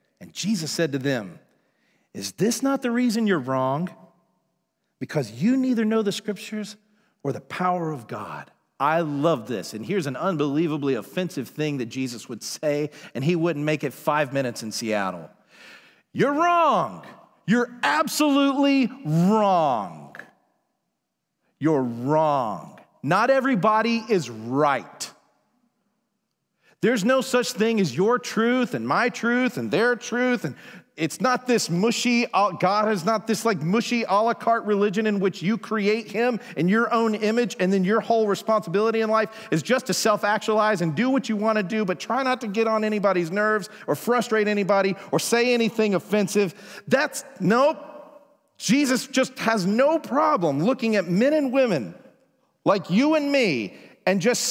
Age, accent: 40-59, American